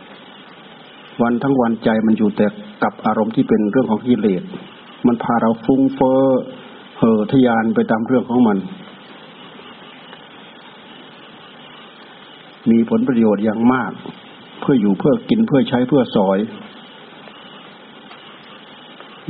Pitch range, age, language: 110-135 Hz, 60-79, Thai